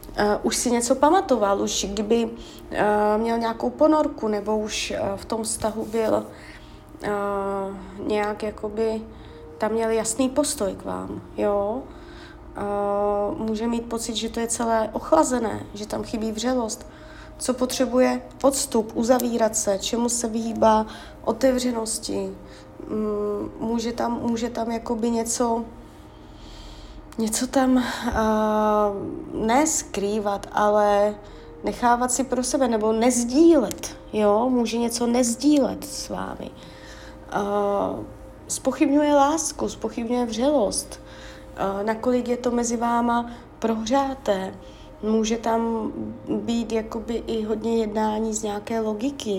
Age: 30-49